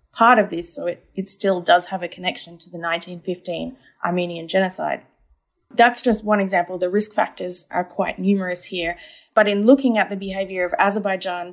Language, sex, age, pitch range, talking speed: English, female, 20-39, 180-210 Hz, 180 wpm